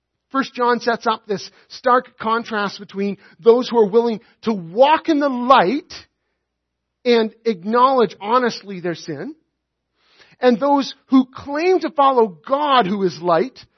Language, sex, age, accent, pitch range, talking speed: English, male, 40-59, American, 205-270 Hz, 140 wpm